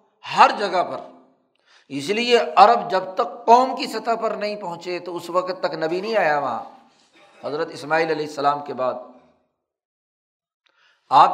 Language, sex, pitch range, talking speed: Urdu, male, 160-210 Hz, 155 wpm